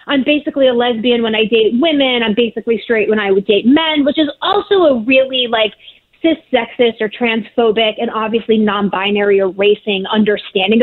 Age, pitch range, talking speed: 30-49, 215-275 Hz, 170 wpm